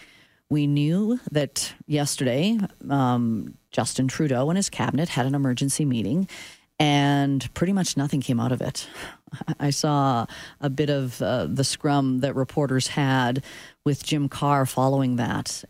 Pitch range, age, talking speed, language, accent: 135-175 Hz, 40-59, 145 wpm, English, American